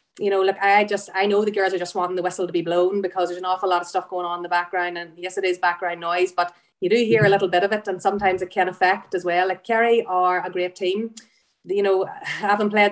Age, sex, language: 30-49, female, English